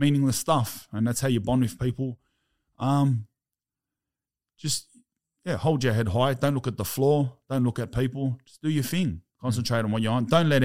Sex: male